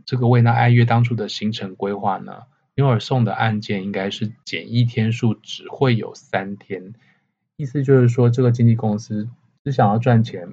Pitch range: 105-125 Hz